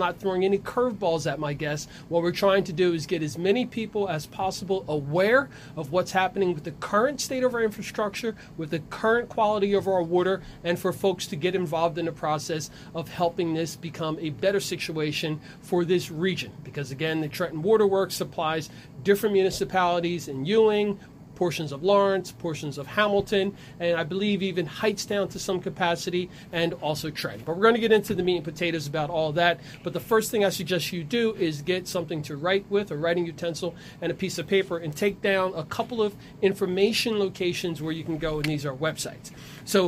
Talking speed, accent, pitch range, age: 205 wpm, American, 160-200 Hz, 40-59